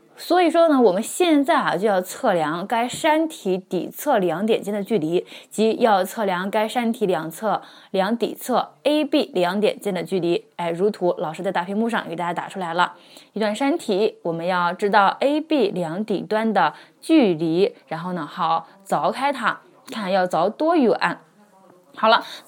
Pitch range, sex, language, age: 180-260 Hz, female, Chinese, 20-39